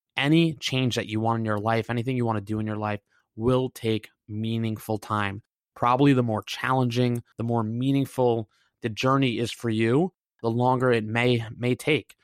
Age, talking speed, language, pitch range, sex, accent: 20-39, 185 wpm, English, 110-130 Hz, male, American